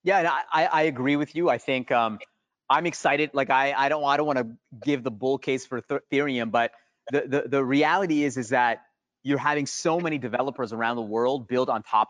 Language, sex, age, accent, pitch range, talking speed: English, male, 30-49, American, 125-155 Hz, 230 wpm